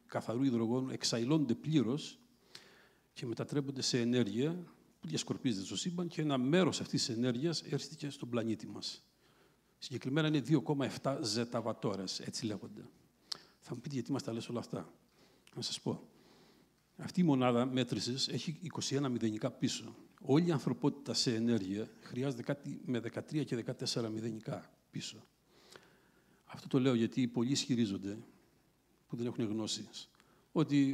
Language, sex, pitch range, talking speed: Greek, male, 115-150 Hz, 140 wpm